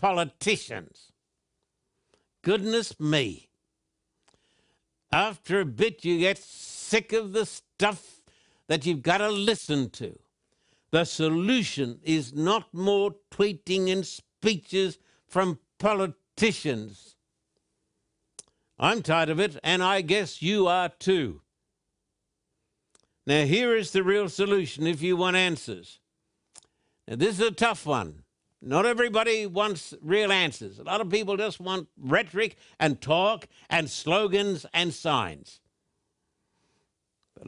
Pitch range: 155-205 Hz